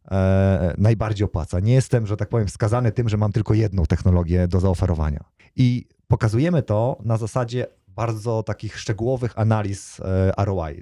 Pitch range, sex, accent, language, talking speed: 95-120 Hz, male, native, Polish, 145 wpm